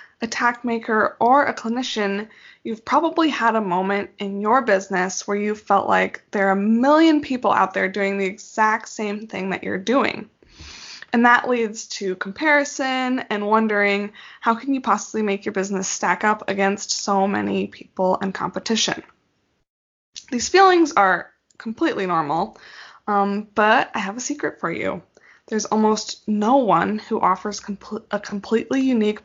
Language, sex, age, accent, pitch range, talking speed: English, female, 20-39, American, 195-235 Hz, 160 wpm